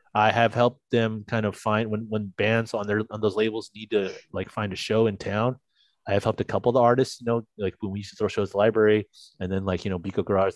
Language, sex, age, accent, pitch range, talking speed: English, male, 30-49, American, 100-120 Hz, 285 wpm